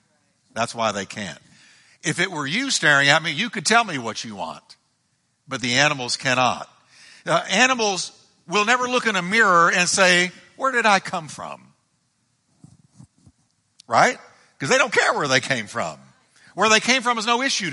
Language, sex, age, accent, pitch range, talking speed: English, male, 60-79, American, 130-195 Hz, 180 wpm